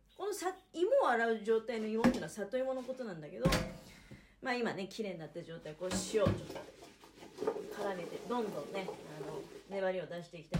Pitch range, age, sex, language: 170-245 Hz, 40-59, female, Japanese